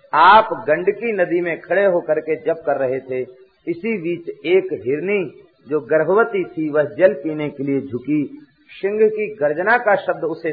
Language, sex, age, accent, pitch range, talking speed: Hindi, male, 50-69, native, 135-195 Hz, 170 wpm